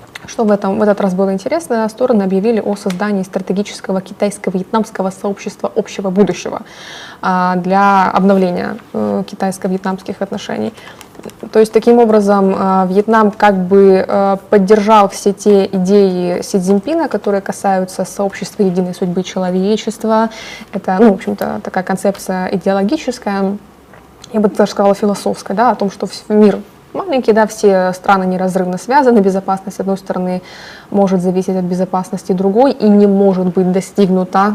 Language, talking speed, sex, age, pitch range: Russian, 135 wpm, female, 20-39, 185-210 Hz